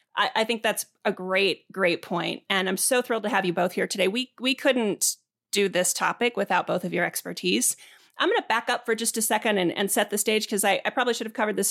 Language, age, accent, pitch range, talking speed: English, 30-49, American, 185-230 Hz, 255 wpm